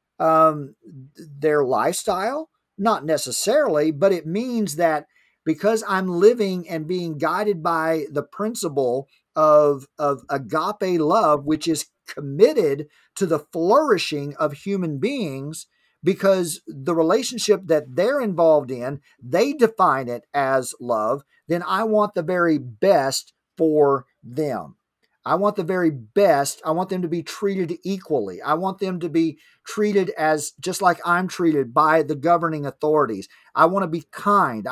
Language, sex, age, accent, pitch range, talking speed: English, male, 50-69, American, 150-190 Hz, 145 wpm